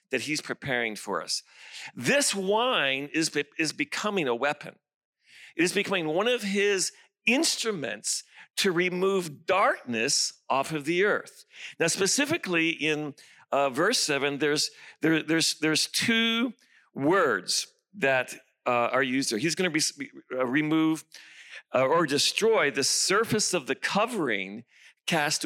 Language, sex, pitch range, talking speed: English, male, 145-195 Hz, 135 wpm